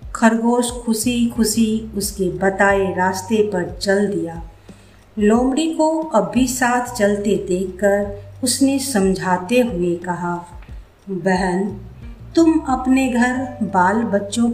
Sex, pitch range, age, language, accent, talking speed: female, 180-240 Hz, 50-69, Hindi, native, 105 wpm